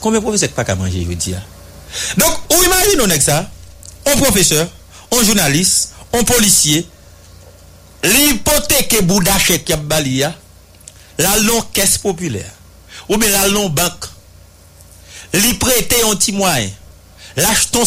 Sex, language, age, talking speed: male, English, 60-79, 130 wpm